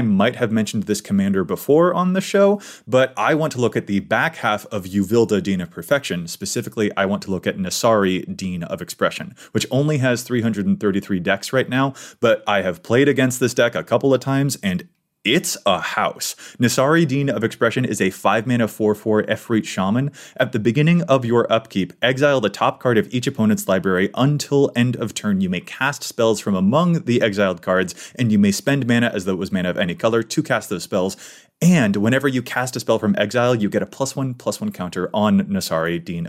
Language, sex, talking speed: English, male, 210 wpm